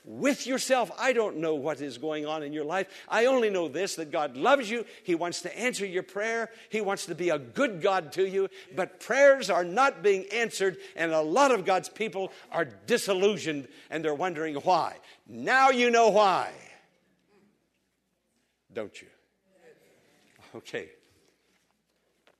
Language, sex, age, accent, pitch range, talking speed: English, male, 60-79, American, 140-205 Hz, 160 wpm